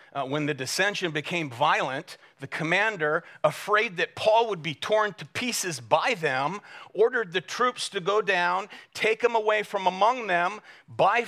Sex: male